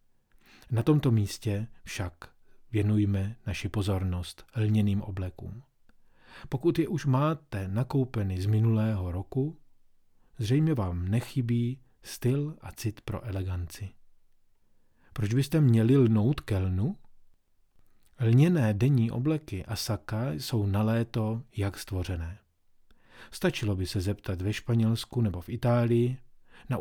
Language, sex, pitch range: Czech, male, 100-130 Hz